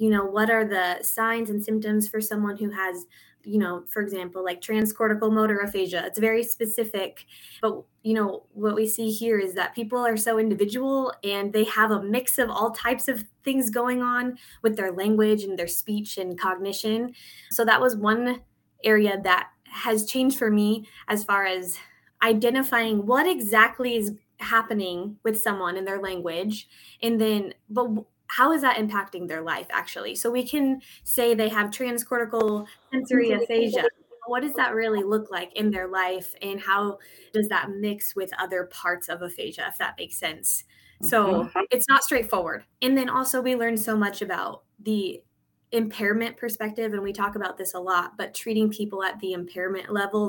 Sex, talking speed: female, 180 wpm